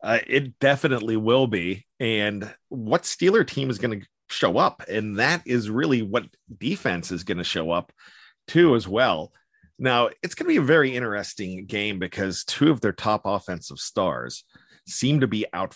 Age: 40-59